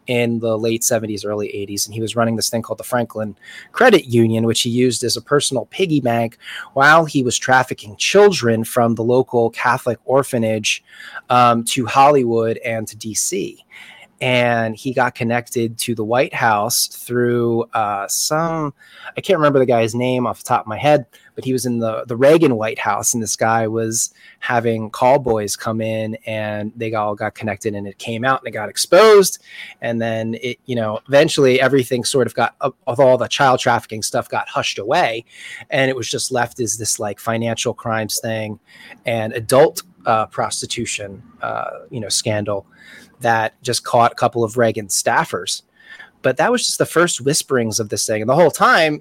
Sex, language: male, English